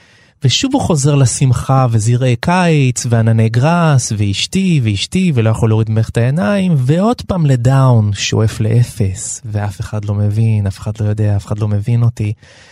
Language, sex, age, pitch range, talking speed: Hebrew, male, 30-49, 115-160 Hz, 155 wpm